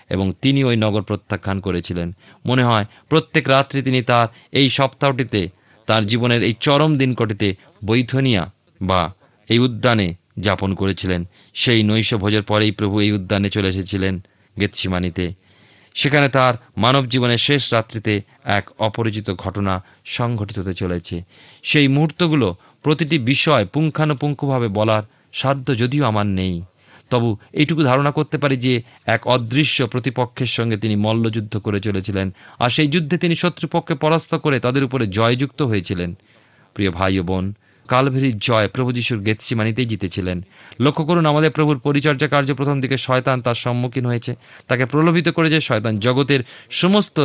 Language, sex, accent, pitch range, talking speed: Bengali, male, native, 105-140 Hz, 115 wpm